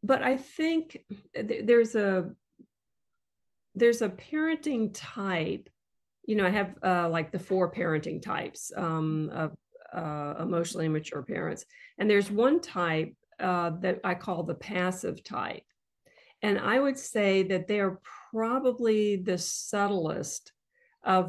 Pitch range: 170-215 Hz